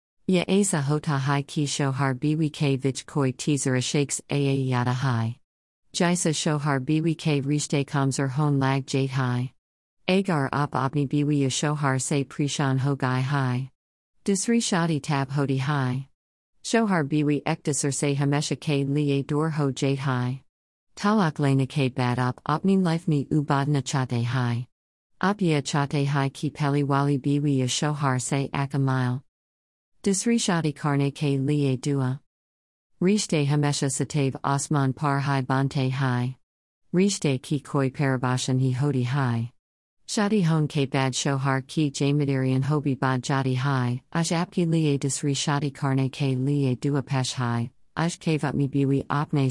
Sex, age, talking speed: female, 50-69, 145 wpm